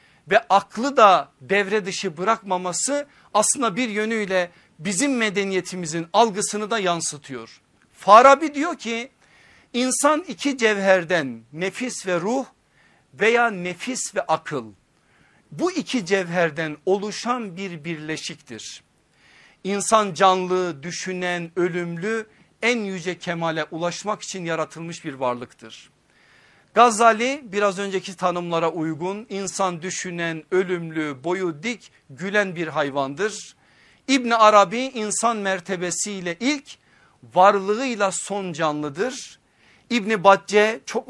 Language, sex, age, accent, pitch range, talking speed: English, male, 50-69, Turkish, 170-220 Hz, 100 wpm